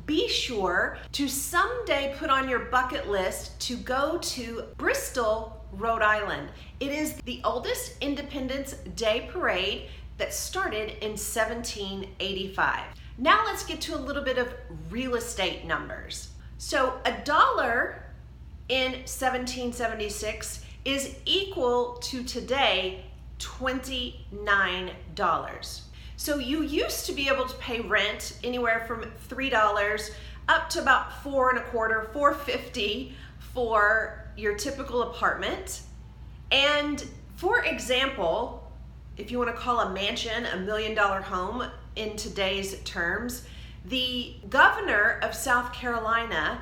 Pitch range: 215-275 Hz